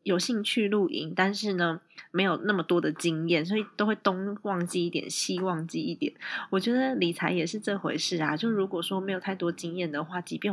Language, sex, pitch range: Chinese, female, 165-205 Hz